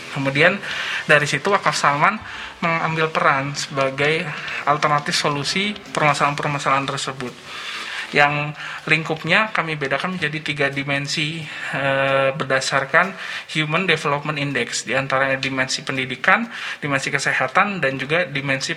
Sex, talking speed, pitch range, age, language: male, 100 wpm, 140-165 Hz, 20-39, Indonesian